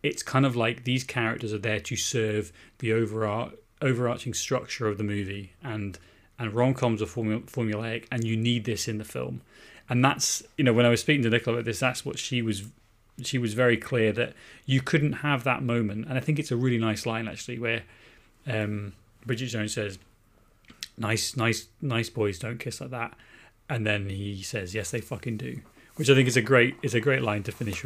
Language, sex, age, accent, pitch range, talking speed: English, male, 30-49, British, 105-125 Hz, 205 wpm